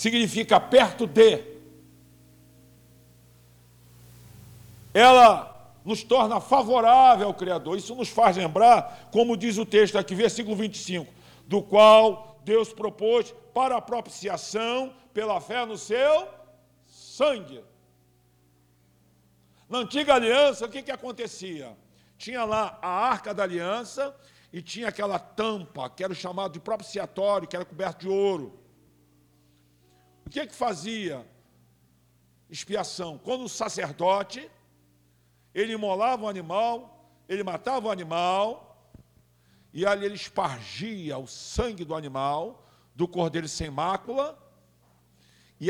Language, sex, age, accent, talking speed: Portuguese, male, 60-79, Brazilian, 120 wpm